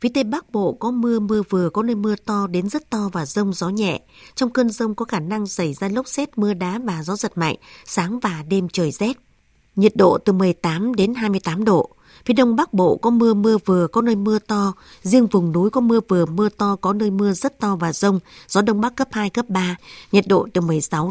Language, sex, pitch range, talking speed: Vietnamese, female, 180-225 Hz, 240 wpm